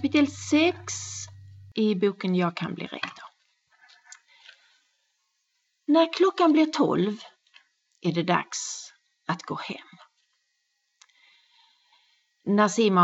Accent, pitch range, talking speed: Swedish, 180-275 Hz, 85 wpm